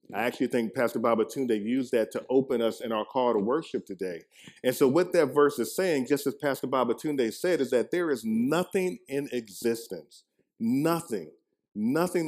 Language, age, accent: English, 40-59, American